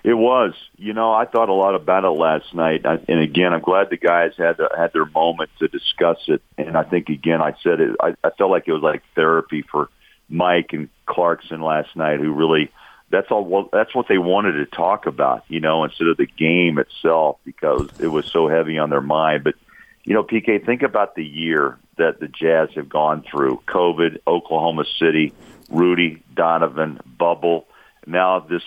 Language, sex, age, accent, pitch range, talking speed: English, male, 50-69, American, 80-90 Hz, 195 wpm